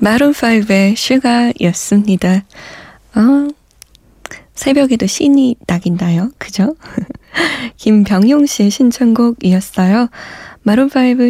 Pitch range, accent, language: 185-240 Hz, native, Korean